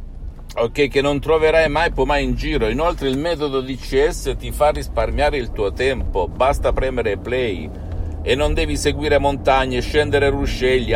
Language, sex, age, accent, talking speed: Italian, male, 50-69, native, 160 wpm